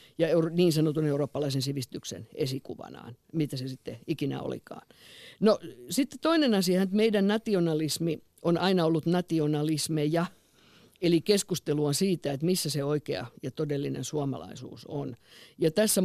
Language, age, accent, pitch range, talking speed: Finnish, 50-69, native, 145-170 Hz, 130 wpm